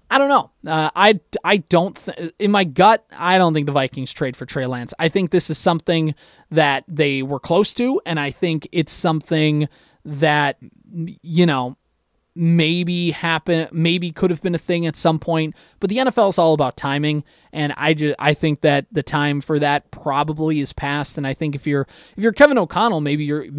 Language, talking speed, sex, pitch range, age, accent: English, 205 wpm, male, 145-175 Hz, 20-39, American